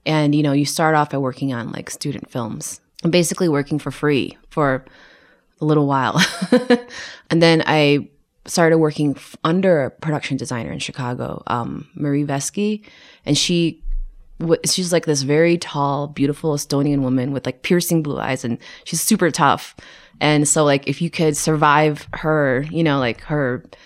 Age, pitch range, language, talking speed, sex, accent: 20-39, 140-165 Hz, English, 170 wpm, female, American